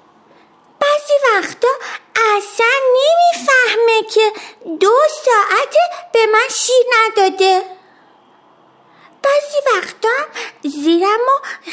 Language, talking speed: Persian, 80 wpm